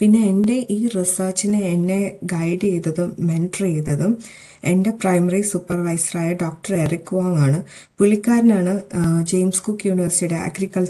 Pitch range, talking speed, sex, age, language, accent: 175-200 Hz, 105 wpm, female, 20-39, Malayalam, native